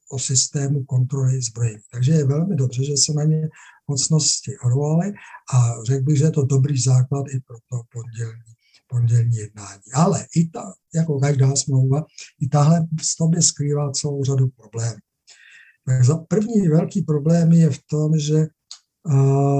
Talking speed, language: 155 wpm, Czech